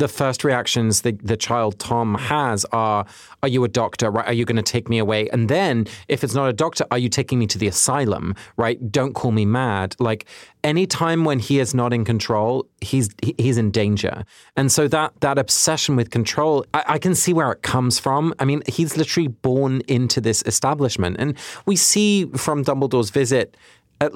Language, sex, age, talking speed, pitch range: English, male, 30-49, 205 wpm, 110-140 Hz